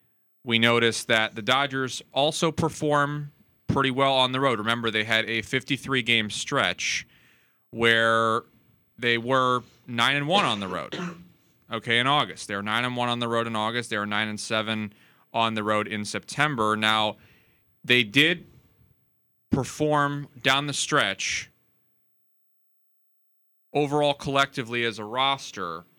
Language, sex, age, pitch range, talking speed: English, male, 30-49, 105-130 Hz, 145 wpm